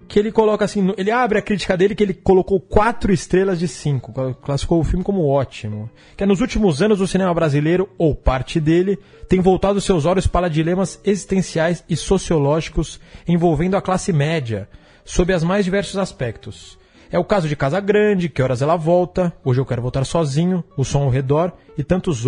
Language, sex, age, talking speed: Portuguese, male, 30-49, 190 wpm